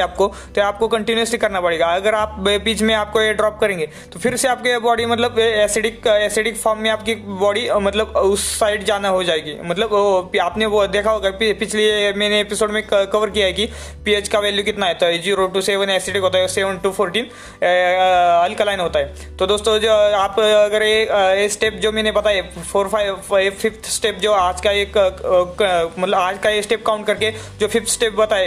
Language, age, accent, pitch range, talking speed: Hindi, 20-39, native, 200-225 Hz, 115 wpm